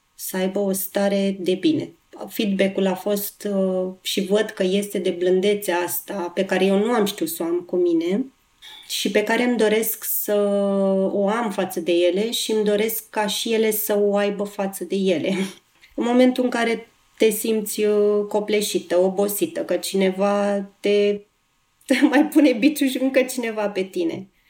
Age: 30-49